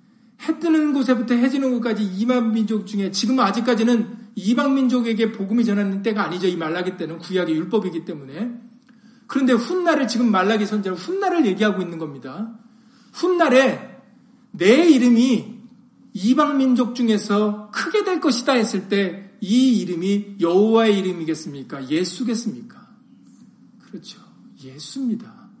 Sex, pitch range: male, 185-235 Hz